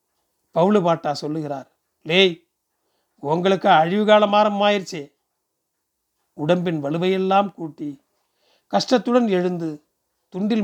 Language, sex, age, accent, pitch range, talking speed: Tamil, male, 40-59, native, 155-200 Hz, 75 wpm